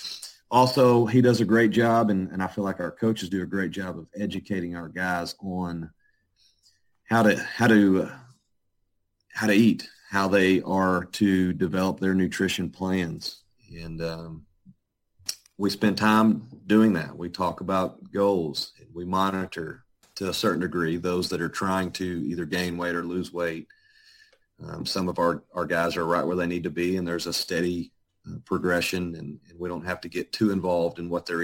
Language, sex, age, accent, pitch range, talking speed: English, male, 40-59, American, 85-105 Hz, 185 wpm